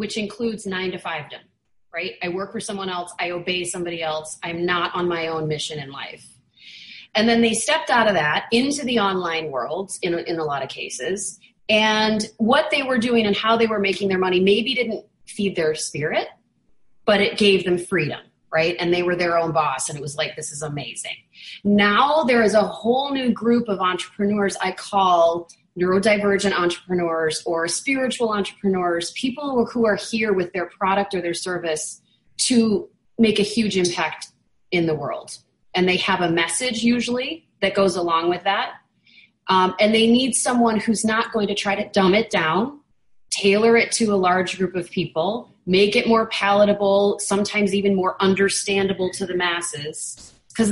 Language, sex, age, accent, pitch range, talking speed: English, female, 30-49, American, 175-215 Hz, 185 wpm